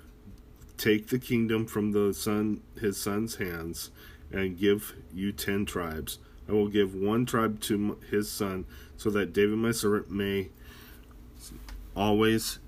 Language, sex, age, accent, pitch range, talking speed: English, male, 30-49, American, 80-105 Hz, 135 wpm